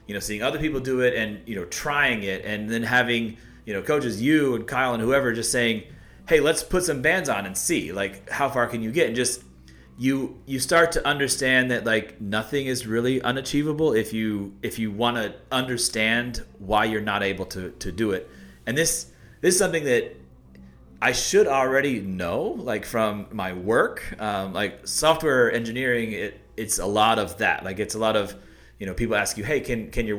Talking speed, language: 210 wpm, English